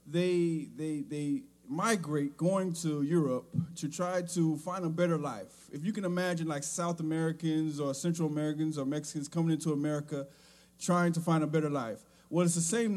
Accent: American